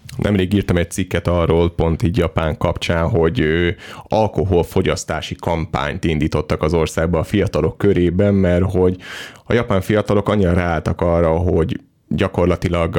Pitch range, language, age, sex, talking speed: 85-100 Hz, Hungarian, 30-49, male, 130 wpm